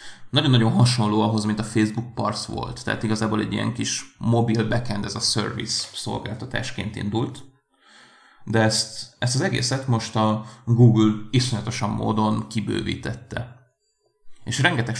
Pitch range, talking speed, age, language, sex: 110-120 Hz, 130 wpm, 30-49, Hungarian, male